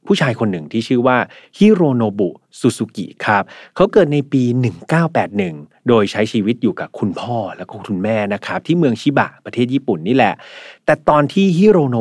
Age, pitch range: 30-49, 105-140 Hz